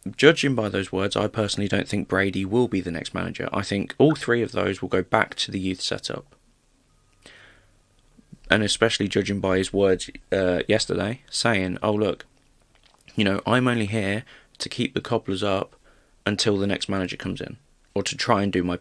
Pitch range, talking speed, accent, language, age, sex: 95-115 Hz, 190 wpm, British, English, 20-39, male